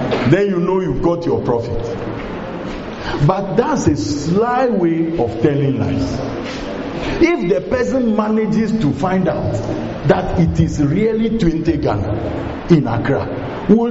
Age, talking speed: 50-69, 135 wpm